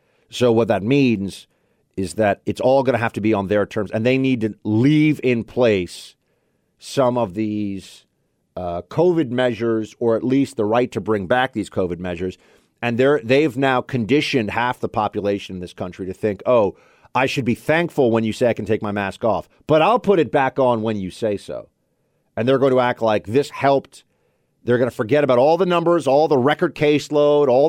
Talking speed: 210 wpm